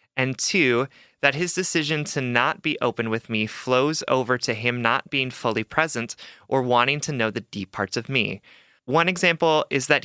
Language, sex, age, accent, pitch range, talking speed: English, male, 30-49, American, 115-145 Hz, 190 wpm